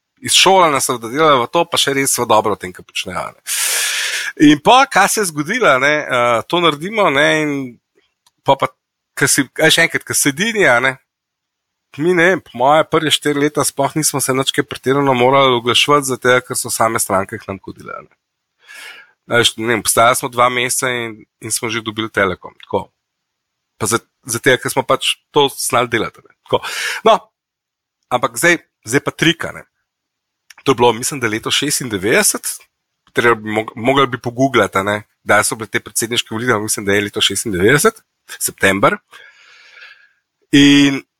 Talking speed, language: 175 wpm, English